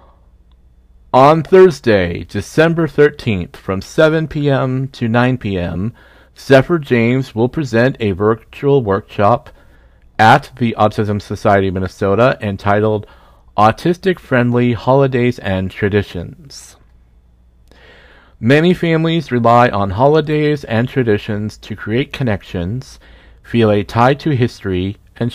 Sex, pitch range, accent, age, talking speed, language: male, 95-135 Hz, American, 40-59, 105 wpm, English